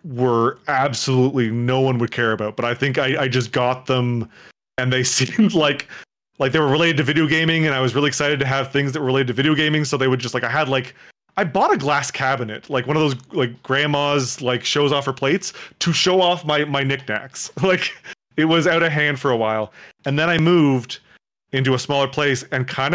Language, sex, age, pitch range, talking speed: English, male, 30-49, 125-150 Hz, 235 wpm